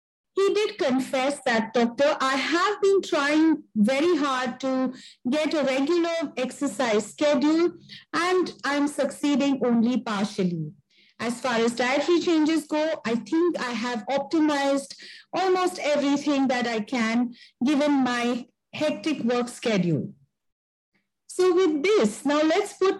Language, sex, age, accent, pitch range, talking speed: English, female, 50-69, Indian, 240-310 Hz, 130 wpm